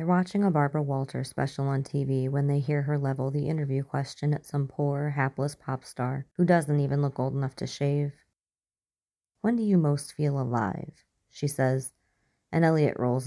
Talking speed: 185 wpm